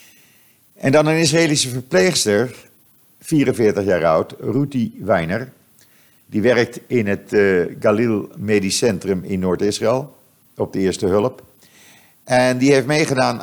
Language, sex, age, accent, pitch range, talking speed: Dutch, male, 50-69, Dutch, 95-125 Hz, 125 wpm